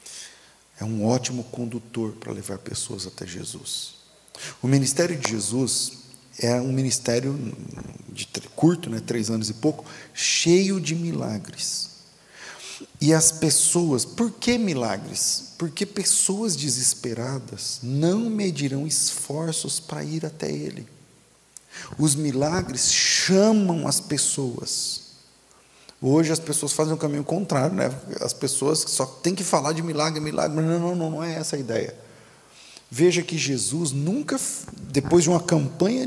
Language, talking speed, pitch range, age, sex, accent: Portuguese, 135 wpm, 130-170 Hz, 40-59, male, Brazilian